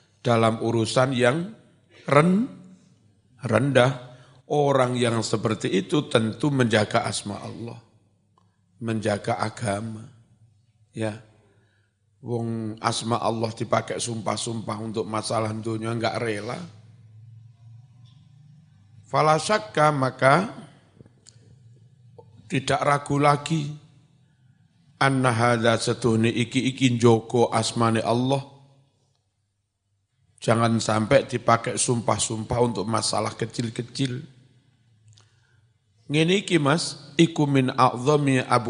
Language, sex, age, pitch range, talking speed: Indonesian, male, 50-69, 110-135 Hz, 80 wpm